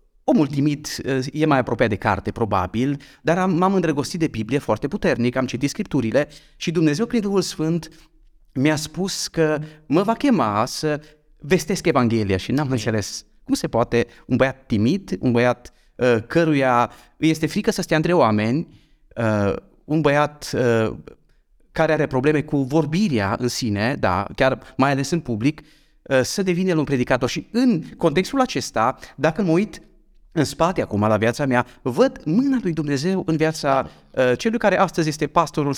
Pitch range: 115-165 Hz